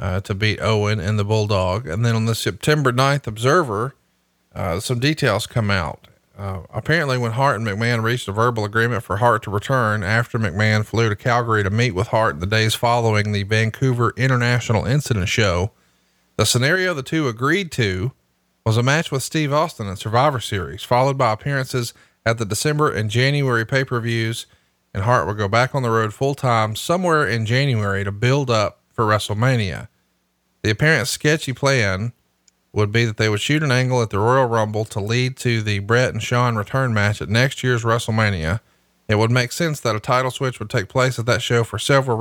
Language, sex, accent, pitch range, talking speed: English, male, American, 105-130 Hz, 200 wpm